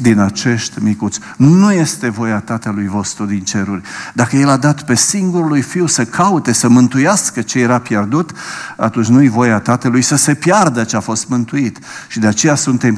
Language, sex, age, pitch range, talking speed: Romanian, male, 50-69, 105-130 Hz, 180 wpm